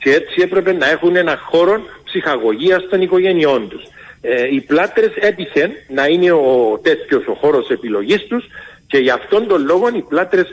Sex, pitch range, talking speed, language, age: male, 155-215 Hz, 165 wpm, Greek, 50-69